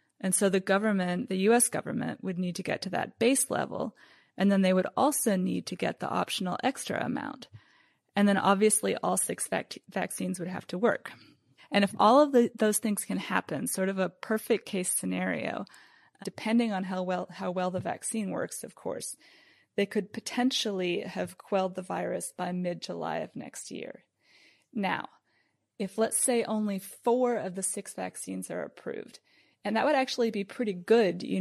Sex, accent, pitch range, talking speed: female, American, 185-215 Hz, 185 wpm